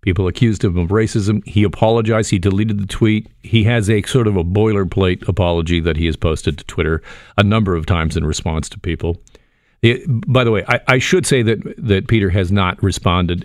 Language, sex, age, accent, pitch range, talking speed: English, male, 50-69, American, 90-120 Hz, 210 wpm